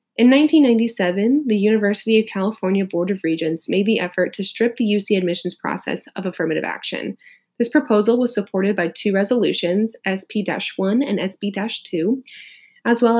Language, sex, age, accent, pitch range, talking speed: English, female, 20-39, American, 185-225 Hz, 150 wpm